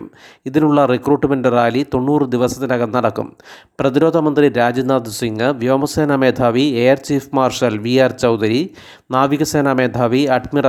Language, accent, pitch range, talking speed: Malayalam, native, 120-135 Hz, 110 wpm